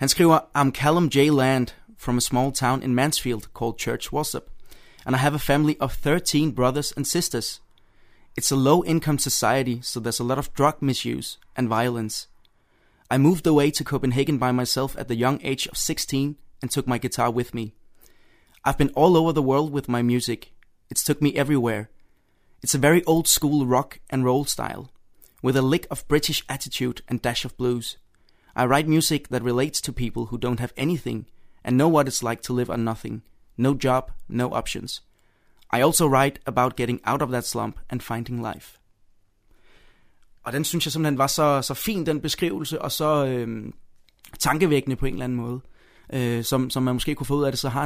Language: Danish